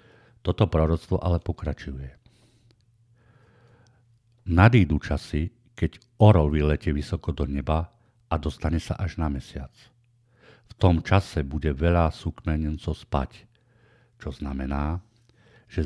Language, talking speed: Slovak, 105 wpm